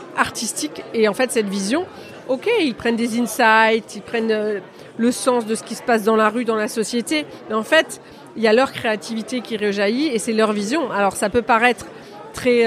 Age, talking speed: 40-59, 220 wpm